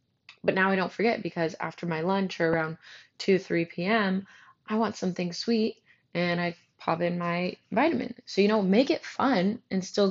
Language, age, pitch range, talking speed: English, 20-39, 165-195 Hz, 190 wpm